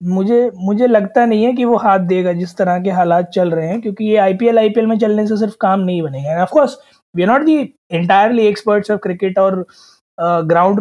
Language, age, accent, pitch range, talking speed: Hindi, 20-39, native, 185-230 Hz, 200 wpm